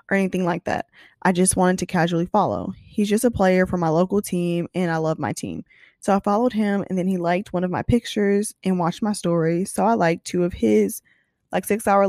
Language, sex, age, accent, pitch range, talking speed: English, female, 20-39, American, 170-210 Hz, 240 wpm